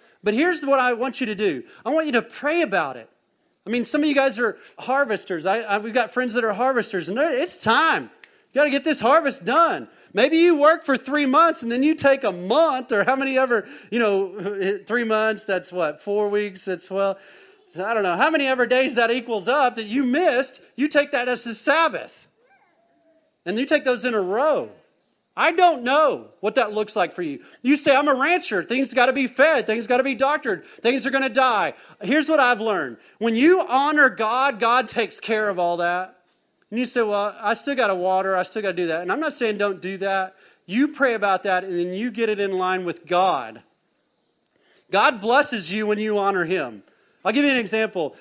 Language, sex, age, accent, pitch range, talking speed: English, male, 30-49, American, 205-275 Hz, 230 wpm